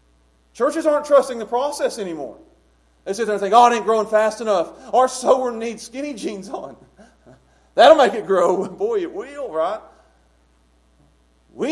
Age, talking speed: 40-59, 165 wpm